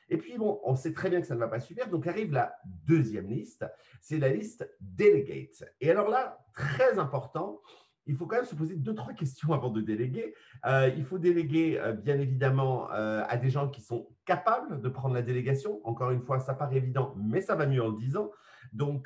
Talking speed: 230 wpm